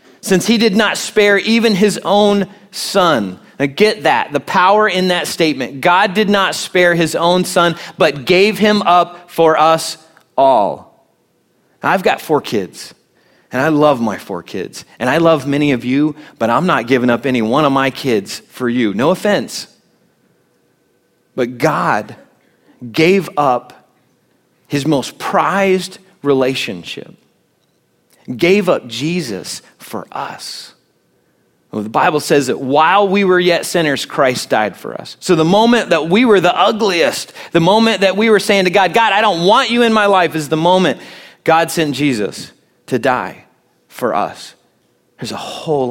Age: 30-49